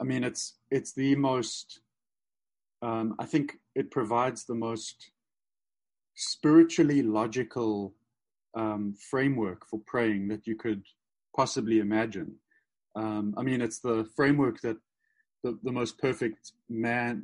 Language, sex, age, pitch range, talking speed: English, male, 30-49, 110-140 Hz, 125 wpm